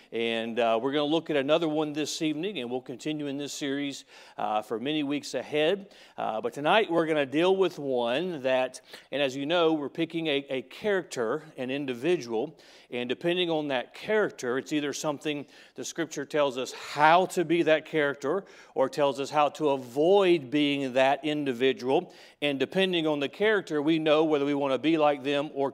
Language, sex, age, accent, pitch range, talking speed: English, male, 40-59, American, 140-185 Hz, 195 wpm